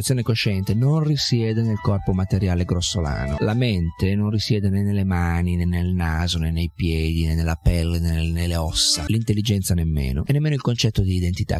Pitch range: 90-115 Hz